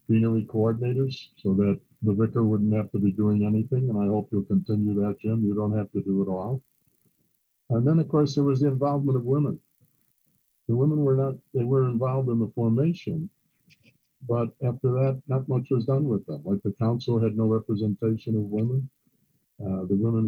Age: 60-79